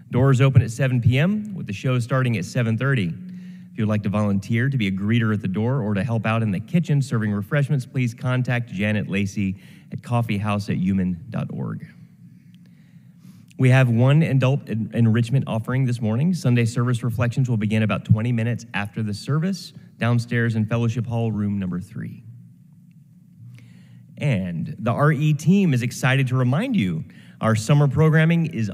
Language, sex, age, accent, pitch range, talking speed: English, male, 30-49, American, 105-140 Hz, 165 wpm